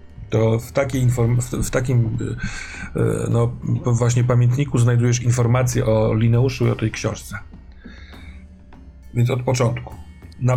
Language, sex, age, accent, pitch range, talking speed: Polish, male, 40-59, native, 110-130 Hz, 120 wpm